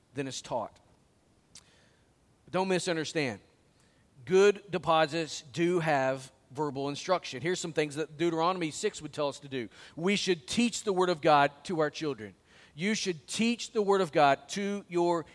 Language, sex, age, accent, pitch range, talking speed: English, male, 40-59, American, 160-210 Hz, 160 wpm